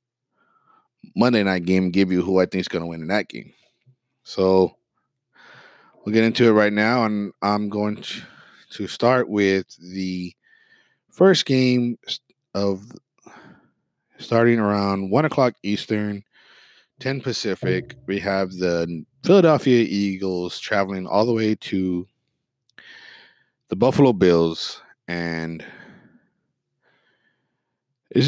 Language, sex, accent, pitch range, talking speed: English, male, American, 95-115 Hz, 115 wpm